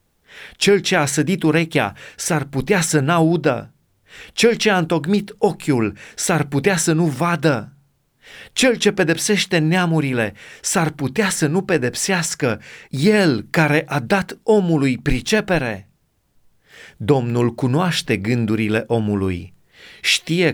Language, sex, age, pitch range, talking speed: Romanian, male, 30-49, 110-160 Hz, 115 wpm